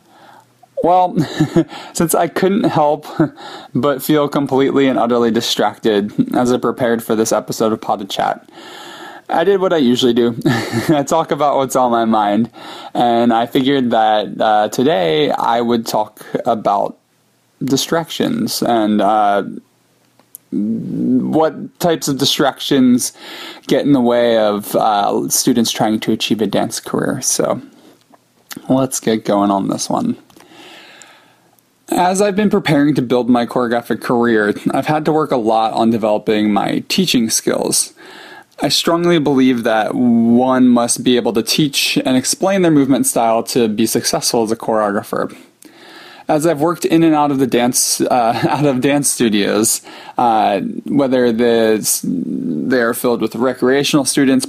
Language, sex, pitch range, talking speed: English, male, 115-165 Hz, 145 wpm